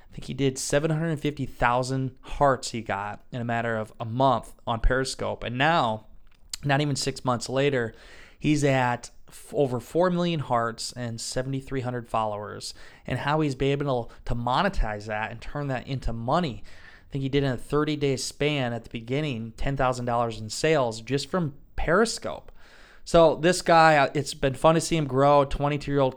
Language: English